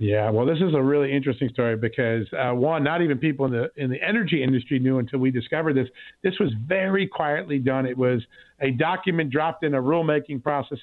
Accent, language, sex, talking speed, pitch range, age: American, English, male, 215 wpm, 130-155 Hz, 50-69